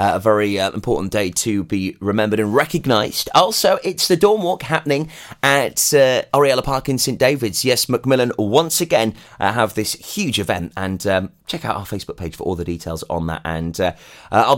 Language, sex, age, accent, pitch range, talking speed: English, male, 30-49, British, 105-145 Hz, 205 wpm